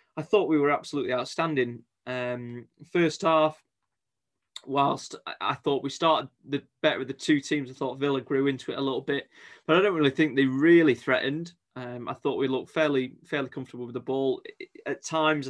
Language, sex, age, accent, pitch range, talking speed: English, male, 20-39, British, 130-145 Hz, 200 wpm